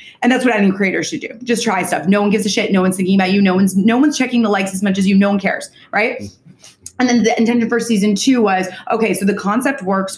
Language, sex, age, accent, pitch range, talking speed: English, female, 20-39, American, 185-230 Hz, 285 wpm